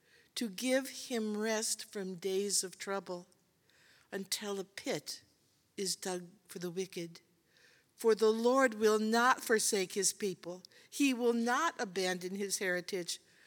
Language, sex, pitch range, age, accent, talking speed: English, female, 205-275 Hz, 60-79, American, 135 wpm